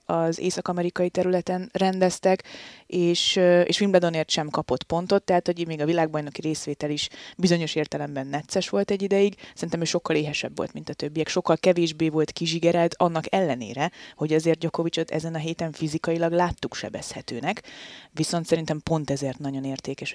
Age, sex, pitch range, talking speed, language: 20-39, female, 145-170 Hz, 160 wpm, Hungarian